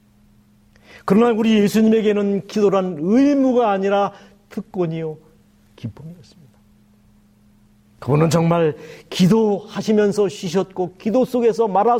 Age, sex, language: 40-59, male, Korean